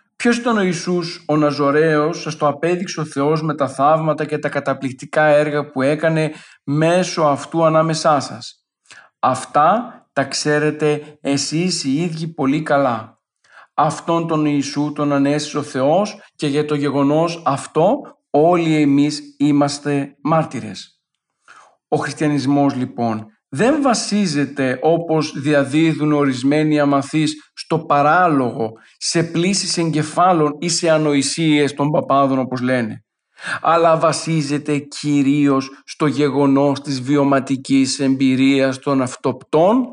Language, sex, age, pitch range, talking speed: Greek, male, 50-69, 140-165 Hz, 120 wpm